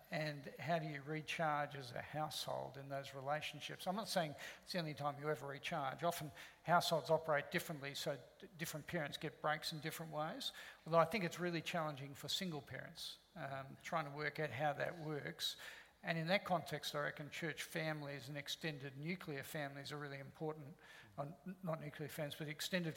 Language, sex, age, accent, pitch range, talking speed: English, male, 50-69, Australian, 145-165 Hz, 185 wpm